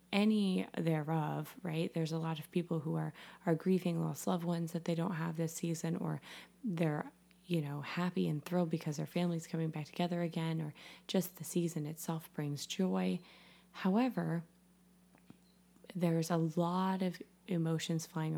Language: English